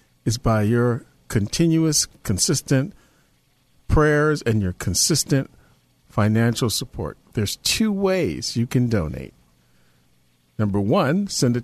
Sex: male